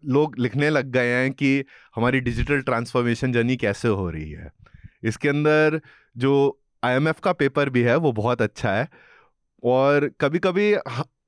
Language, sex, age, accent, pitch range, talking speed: Hindi, male, 30-49, native, 120-155 Hz, 155 wpm